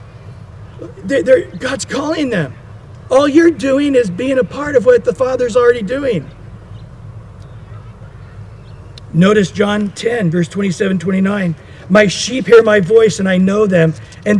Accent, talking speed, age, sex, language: American, 140 wpm, 50-69, male, English